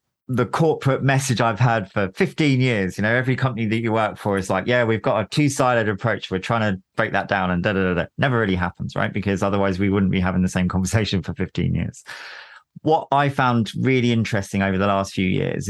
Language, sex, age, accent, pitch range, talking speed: English, male, 30-49, British, 100-120 Hz, 220 wpm